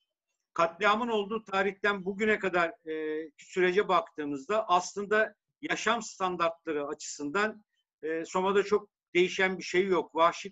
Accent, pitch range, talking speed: native, 165-200 Hz, 115 wpm